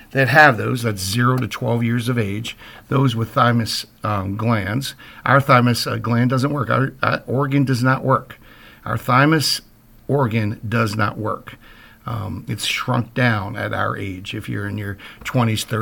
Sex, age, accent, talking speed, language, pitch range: male, 50-69, American, 170 wpm, English, 110-135 Hz